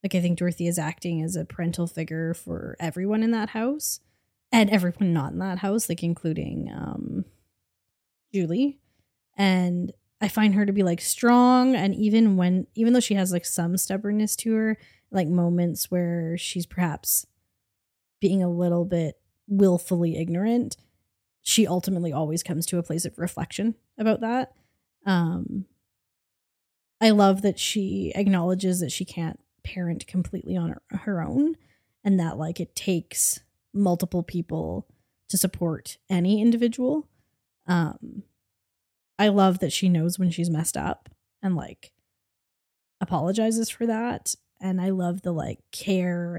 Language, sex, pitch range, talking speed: English, female, 165-200 Hz, 145 wpm